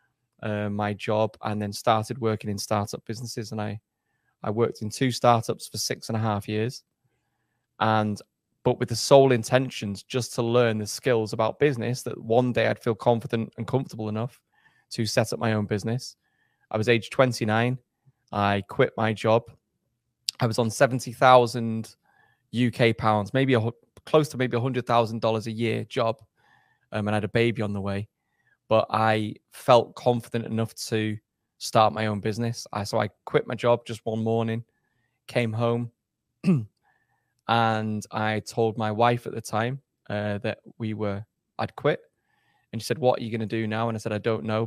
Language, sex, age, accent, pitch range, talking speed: English, male, 20-39, British, 110-120 Hz, 180 wpm